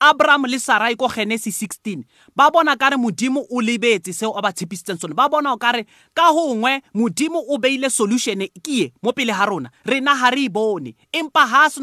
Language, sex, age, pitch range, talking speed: English, male, 30-49, 200-265 Hz, 185 wpm